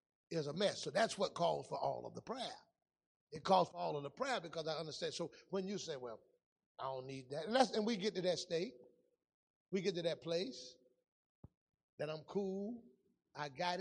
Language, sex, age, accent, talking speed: English, male, 30-49, American, 210 wpm